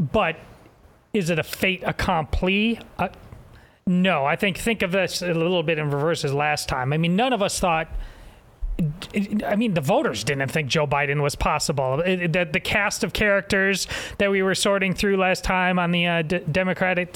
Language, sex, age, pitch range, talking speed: English, male, 30-49, 170-225 Hz, 190 wpm